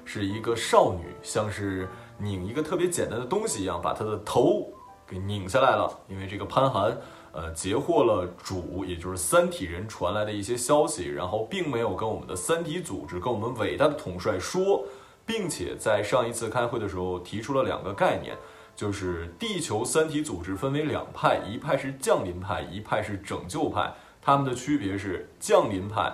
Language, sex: Chinese, male